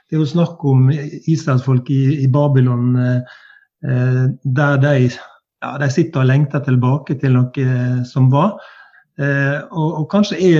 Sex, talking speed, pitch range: male, 145 wpm, 130-150 Hz